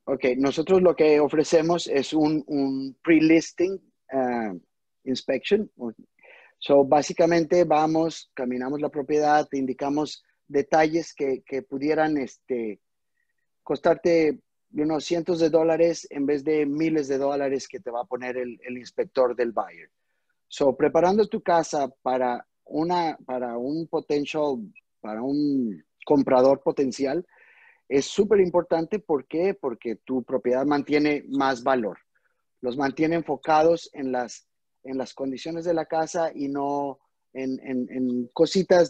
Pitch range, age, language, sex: 130-165 Hz, 30-49, English, male